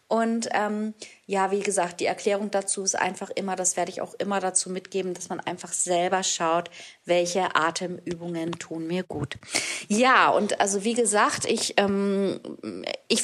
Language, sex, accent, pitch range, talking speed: German, female, German, 185-215 Hz, 165 wpm